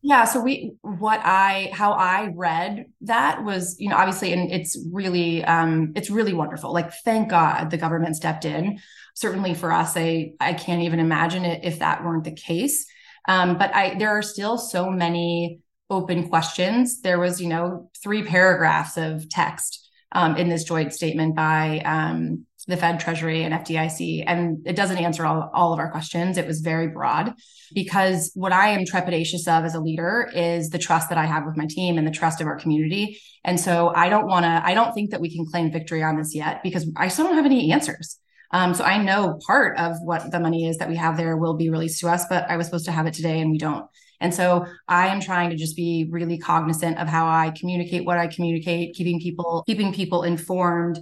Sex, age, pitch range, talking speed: female, 20-39, 165-185 Hz, 215 wpm